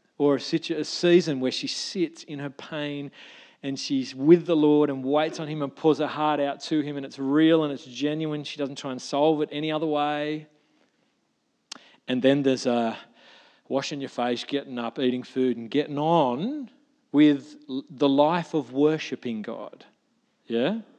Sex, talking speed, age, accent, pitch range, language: male, 175 wpm, 40-59, Australian, 135-155 Hz, English